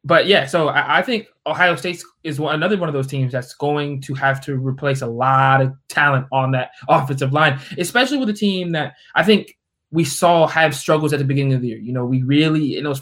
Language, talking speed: English, 230 wpm